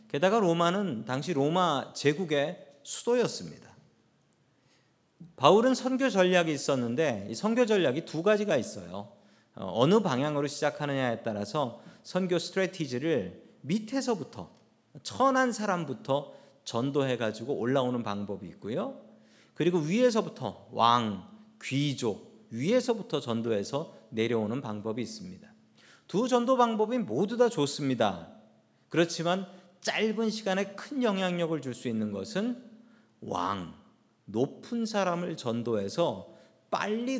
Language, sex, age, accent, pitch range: Korean, male, 40-59, native, 135-215 Hz